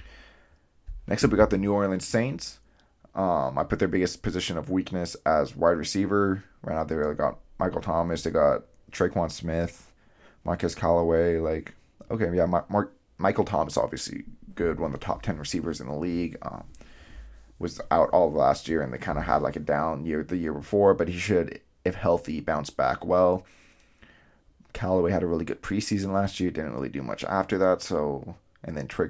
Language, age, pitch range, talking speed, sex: English, 20-39, 75-95 Hz, 190 wpm, male